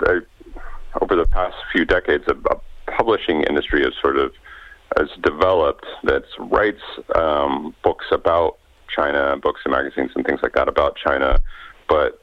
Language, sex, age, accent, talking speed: English, male, 40-59, American, 150 wpm